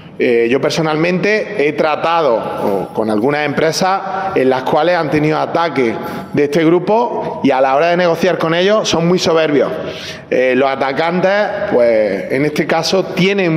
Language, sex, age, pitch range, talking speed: Spanish, male, 30-49, 145-185 Hz, 165 wpm